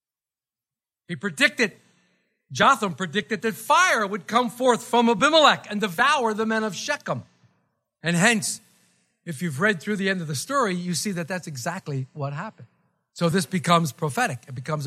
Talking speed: 165 wpm